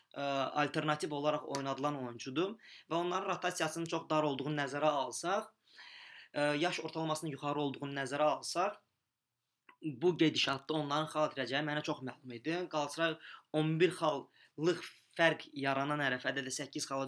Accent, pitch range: Turkish, 135-160 Hz